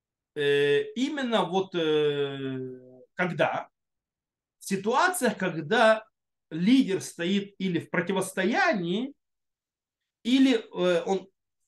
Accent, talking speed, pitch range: native, 65 wpm, 170-230 Hz